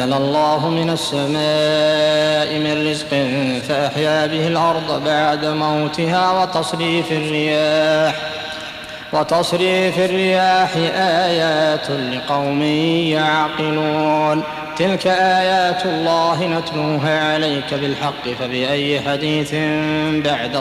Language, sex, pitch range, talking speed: Arabic, male, 150-165 Hz, 80 wpm